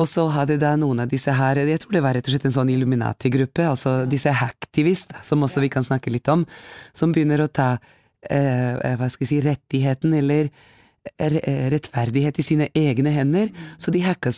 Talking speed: 180 wpm